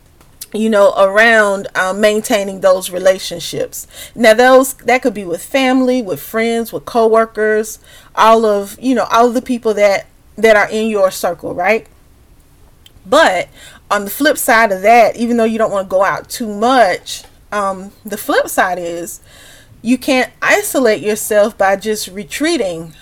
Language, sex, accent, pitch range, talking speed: English, female, American, 190-240 Hz, 160 wpm